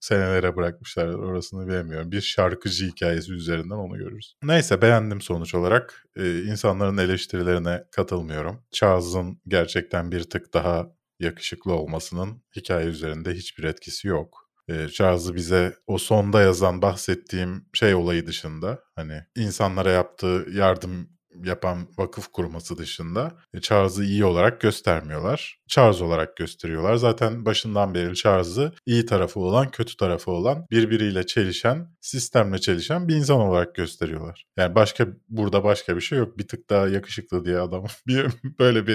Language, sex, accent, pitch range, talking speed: Turkish, male, native, 90-115 Hz, 135 wpm